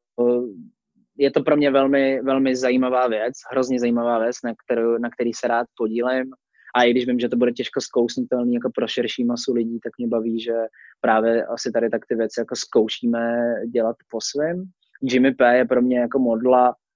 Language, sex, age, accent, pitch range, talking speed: Czech, male, 20-39, native, 120-130 Hz, 200 wpm